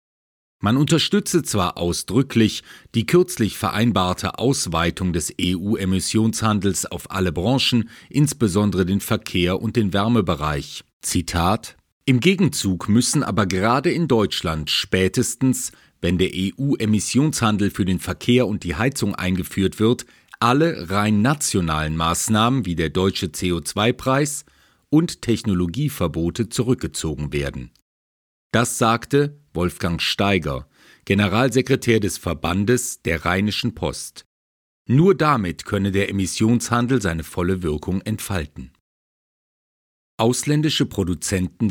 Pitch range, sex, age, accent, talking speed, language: 90-120 Hz, male, 40-59, German, 105 wpm, German